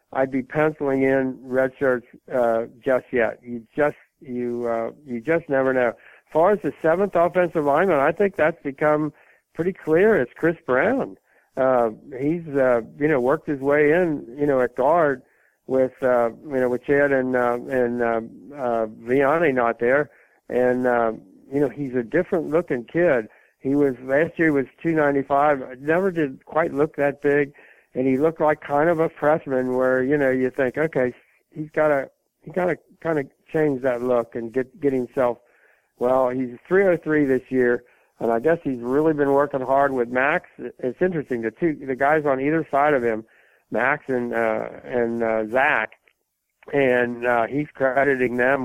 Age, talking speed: 60-79, 180 wpm